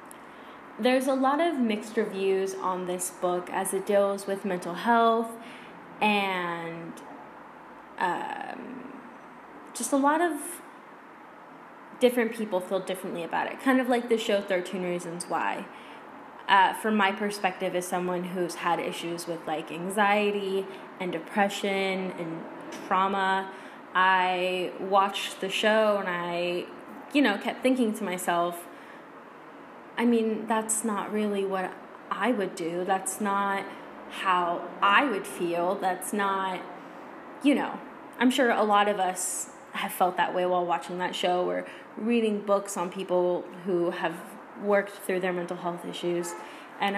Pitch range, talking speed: 180-230 Hz, 140 wpm